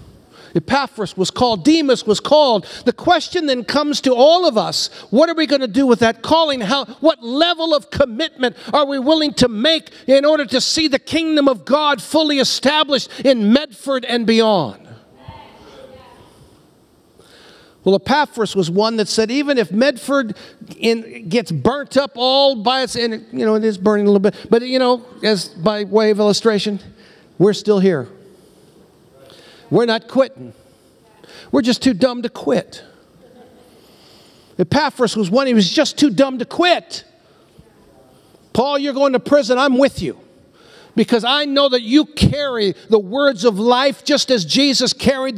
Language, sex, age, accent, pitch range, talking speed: English, male, 50-69, American, 220-280 Hz, 165 wpm